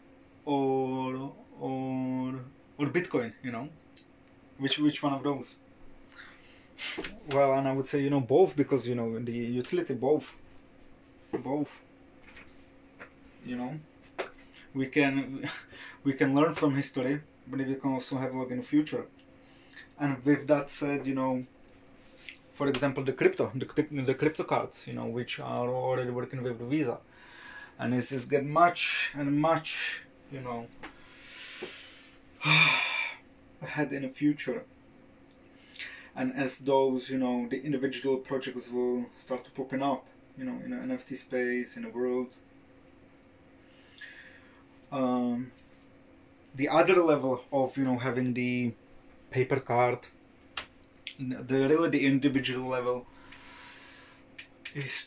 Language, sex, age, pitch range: English, male, 20-39, 130-145 Hz